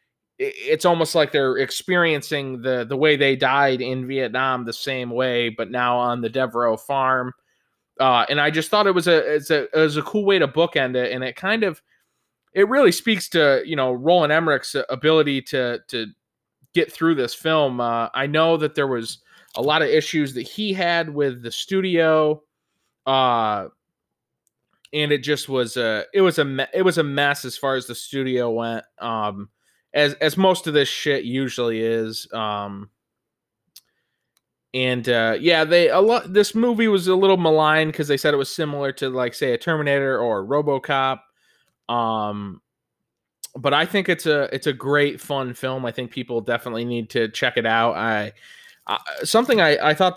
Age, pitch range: 20-39, 125-160 Hz